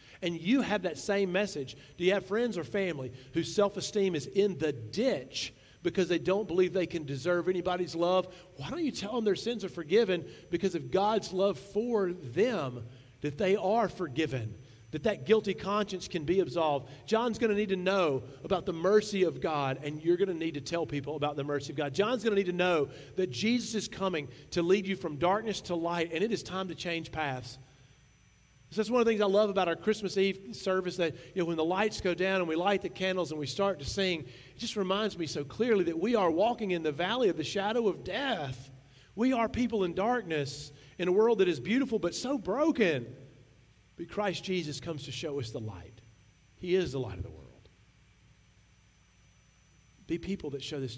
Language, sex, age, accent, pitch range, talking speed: English, male, 40-59, American, 135-195 Hz, 220 wpm